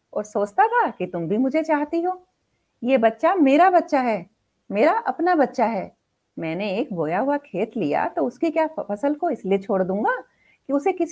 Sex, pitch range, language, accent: female, 190-285 Hz, Hindi, native